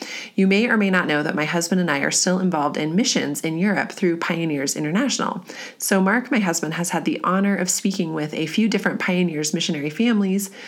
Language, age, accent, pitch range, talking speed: English, 30-49, American, 165-200 Hz, 215 wpm